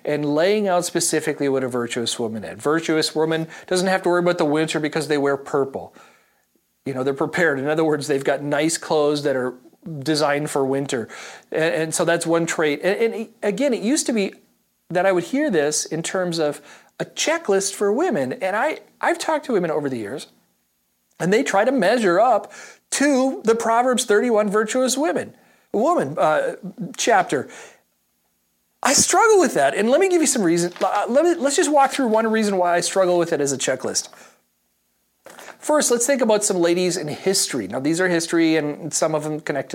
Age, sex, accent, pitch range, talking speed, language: 40-59, male, American, 150-220 Hz, 195 wpm, English